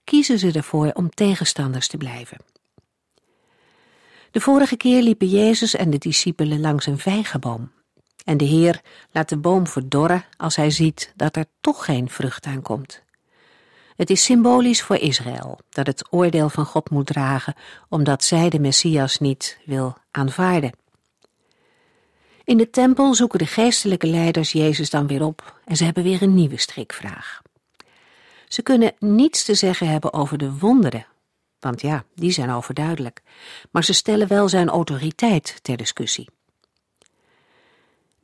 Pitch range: 140-195 Hz